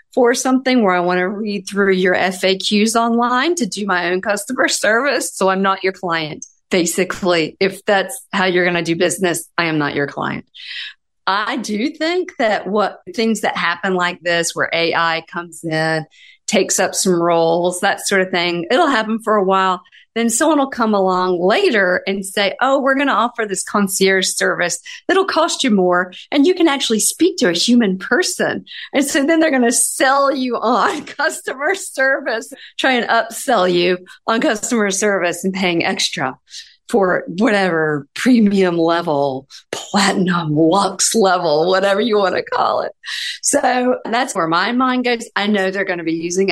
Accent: American